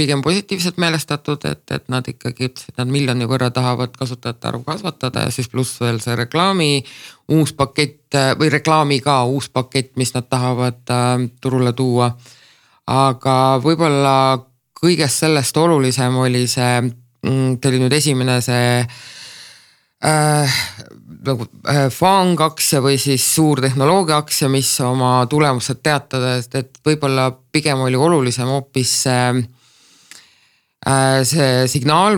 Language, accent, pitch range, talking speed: English, Finnish, 125-140 Hz, 115 wpm